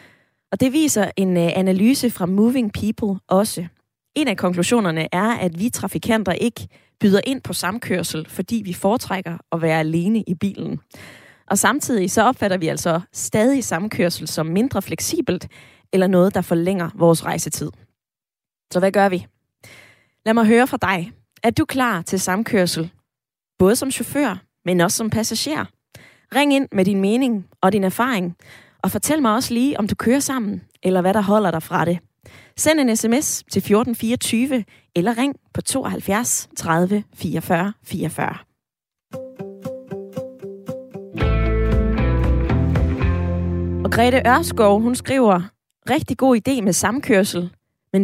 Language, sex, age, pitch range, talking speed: Danish, female, 20-39, 175-230 Hz, 140 wpm